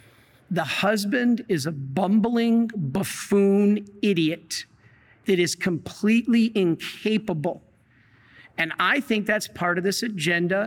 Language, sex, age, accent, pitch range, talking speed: English, male, 50-69, American, 175-230 Hz, 105 wpm